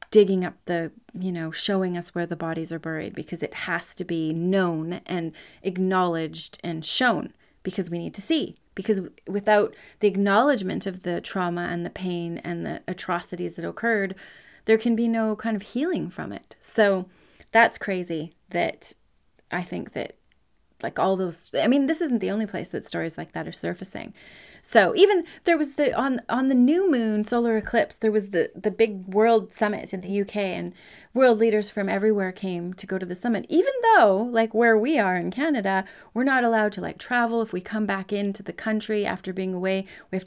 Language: English